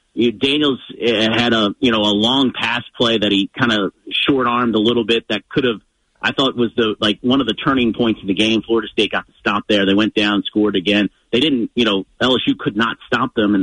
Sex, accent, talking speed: male, American, 240 wpm